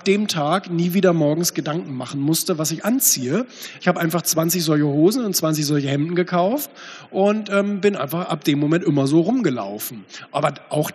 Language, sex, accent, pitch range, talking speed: German, male, German, 155-195 Hz, 185 wpm